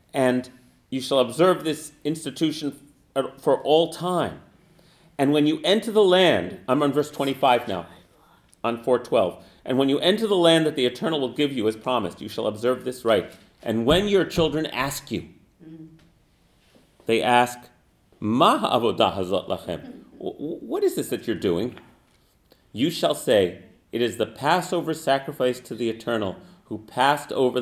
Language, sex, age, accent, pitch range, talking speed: English, male, 40-59, American, 110-150 Hz, 155 wpm